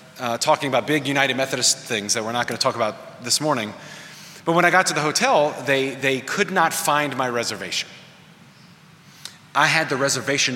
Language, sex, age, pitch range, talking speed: English, male, 30-49, 135-180 Hz, 195 wpm